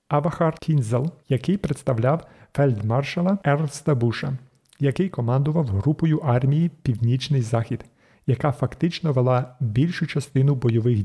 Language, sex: Ukrainian, male